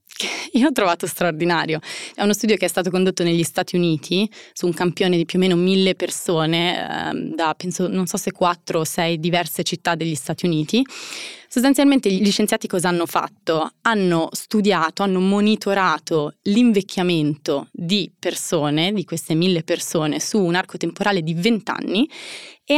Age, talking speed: 20-39, 165 wpm